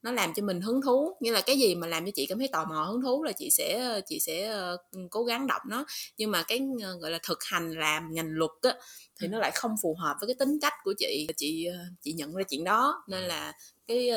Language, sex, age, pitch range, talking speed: Vietnamese, female, 20-39, 165-235 Hz, 260 wpm